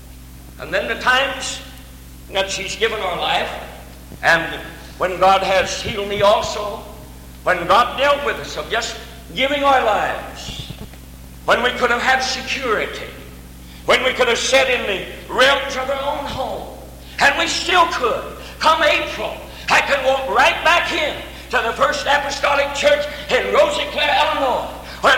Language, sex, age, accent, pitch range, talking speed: English, male, 60-79, American, 215-340 Hz, 155 wpm